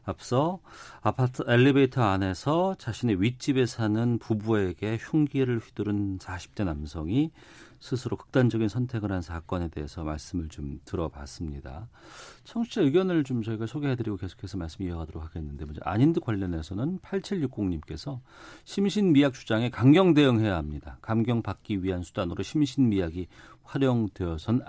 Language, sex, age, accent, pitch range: Korean, male, 40-59, native, 95-140 Hz